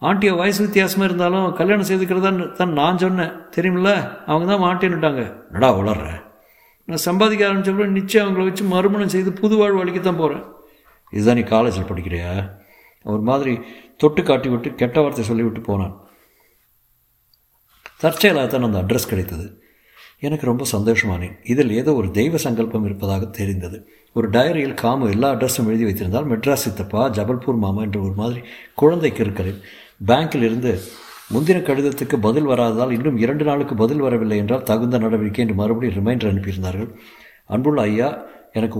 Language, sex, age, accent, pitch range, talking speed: Tamil, male, 60-79, native, 105-150 Hz, 140 wpm